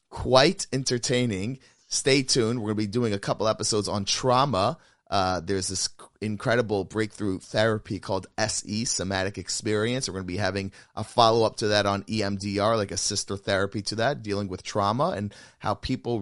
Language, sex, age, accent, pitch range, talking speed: English, male, 30-49, American, 95-125 Hz, 175 wpm